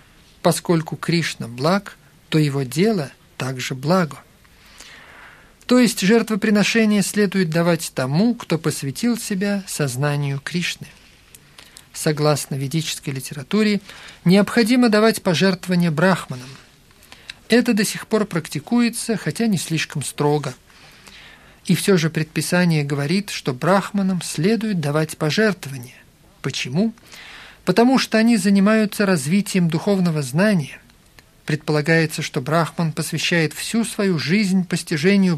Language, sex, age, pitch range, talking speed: Russian, male, 50-69, 150-200 Hz, 105 wpm